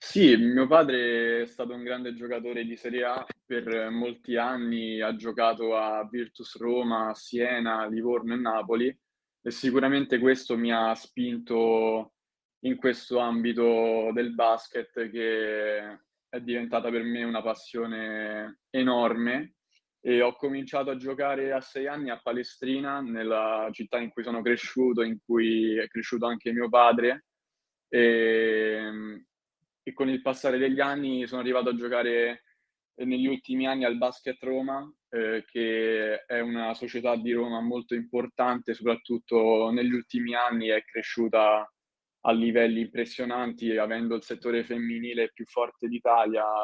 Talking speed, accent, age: 140 wpm, native, 20-39